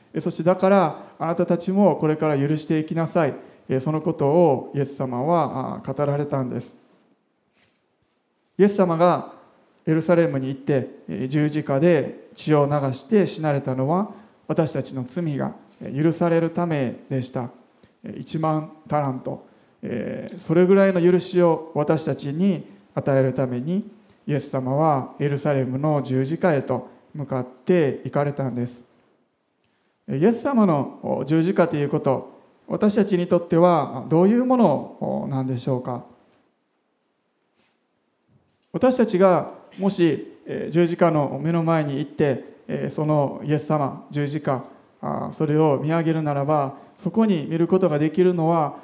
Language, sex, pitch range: Japanese, male, 140-175 Hz